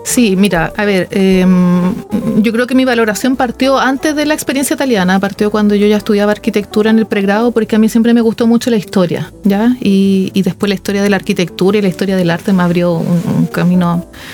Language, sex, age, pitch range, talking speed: Spanish, female, 30-49, 200-235 Hz, 220 wpm